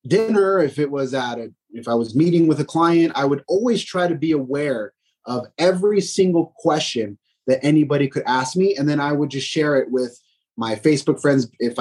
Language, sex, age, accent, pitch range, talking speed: English, male, 30-49, American, 135-180 Hz, 210 wpm